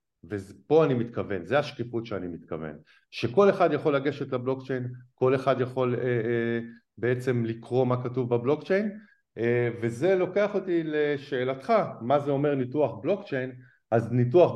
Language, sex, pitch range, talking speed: Hebrew, male, 105-145 Hz, 140 wpm